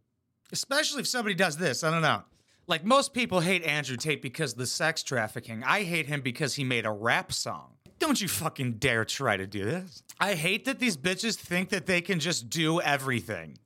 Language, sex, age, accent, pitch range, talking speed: English, male, 30-49, American, 140-200 Hz, 210 wpm